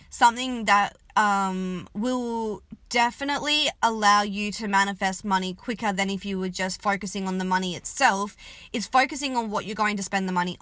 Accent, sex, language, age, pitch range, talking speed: Australian, female, English, 20-39, 180-245 Hz, 175 wpm